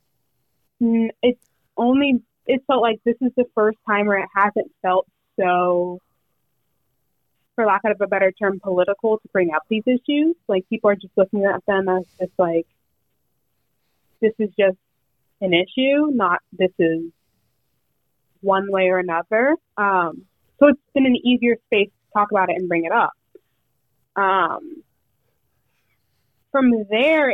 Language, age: English, 20-39